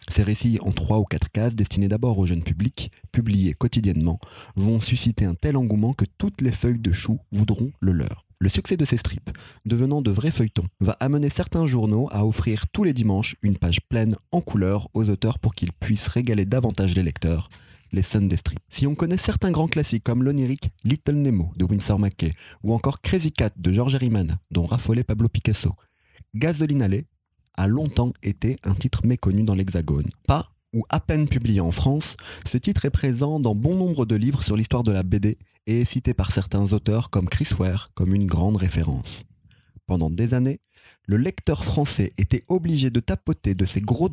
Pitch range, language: 95-125 Hz, French